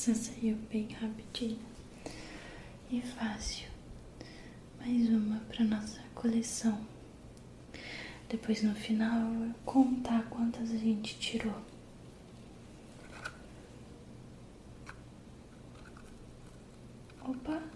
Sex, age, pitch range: female, 10-29, 215-240 Hz